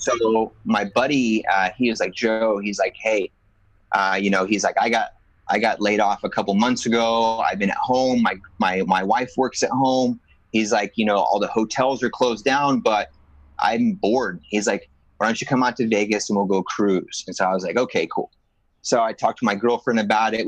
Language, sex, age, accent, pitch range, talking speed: English, male, 30-49, American, 105-125 Hz, 230 wpm